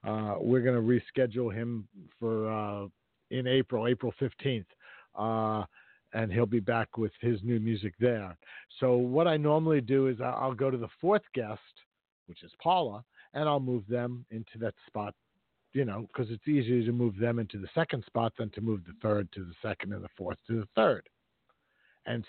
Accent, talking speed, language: American, 190 wpm, English